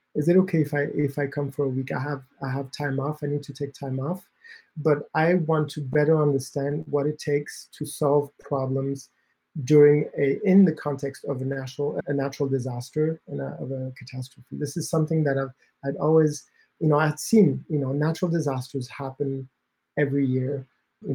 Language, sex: English, male